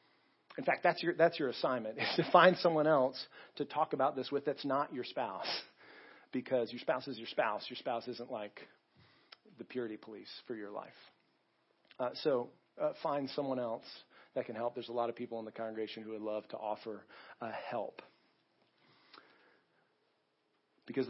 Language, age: English, 40-59